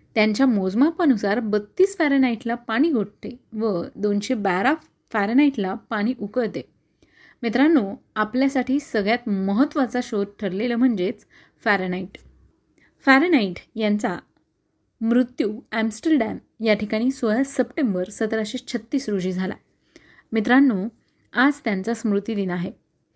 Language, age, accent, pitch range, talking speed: Marathi, 30-49, native, 210-270 Hz, 95 wpm